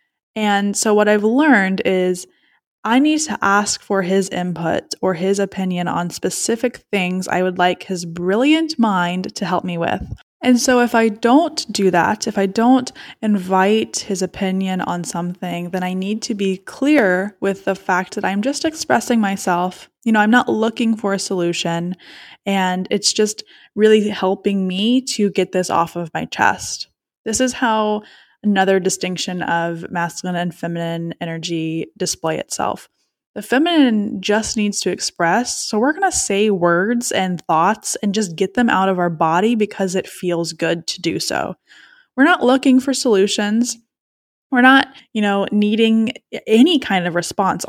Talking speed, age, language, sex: 170 wpm, 10-29, English, female